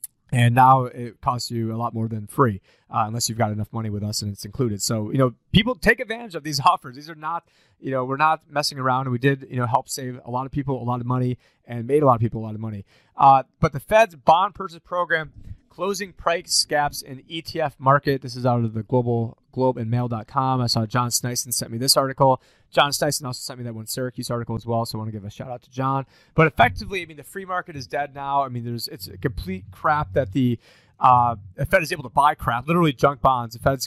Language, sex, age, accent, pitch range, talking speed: English, male, 30-49, American, 120-150 Hz, 260 wpm